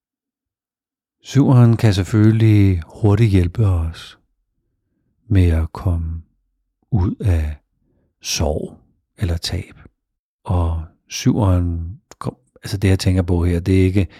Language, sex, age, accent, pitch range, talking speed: Danish, male, 60-79, native, 85-105 Hz, 105 wpm